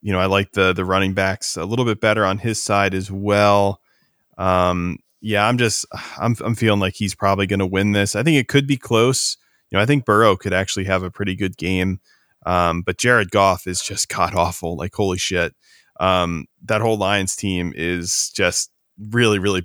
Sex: male